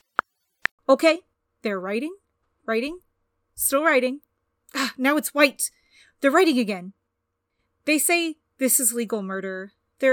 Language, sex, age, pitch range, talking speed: English, female, 30-49, 225-305 Hz, 115 wpm